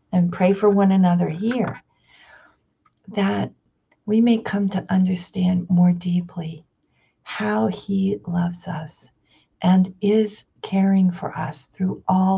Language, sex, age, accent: English, female, 50-69, American